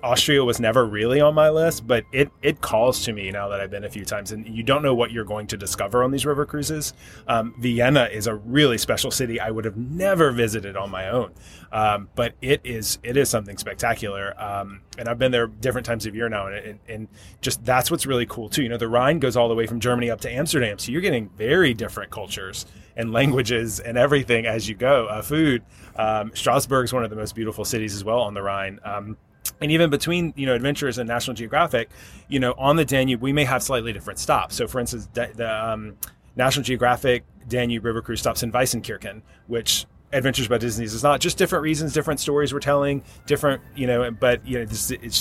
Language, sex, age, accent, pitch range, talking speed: English, male, 20-39, American, 110-135 Hz, 230 wpm